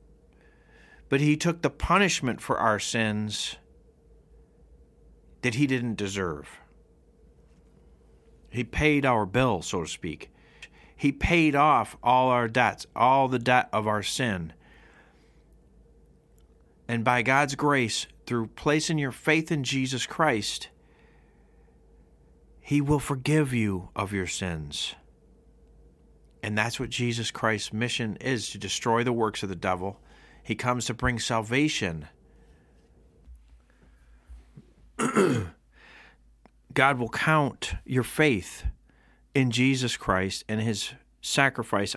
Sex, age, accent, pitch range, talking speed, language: male, 40-59, American, 85-130 Hz, 115 wpm, English